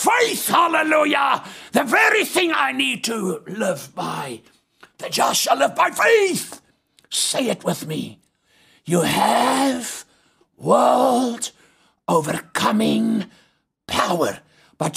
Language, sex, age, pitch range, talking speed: English, male, 60-79, 155-230 Hz, 105 wpm